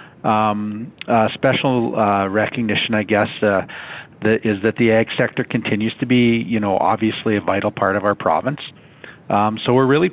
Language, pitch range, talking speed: English, 100-115 Hz, 180 wpm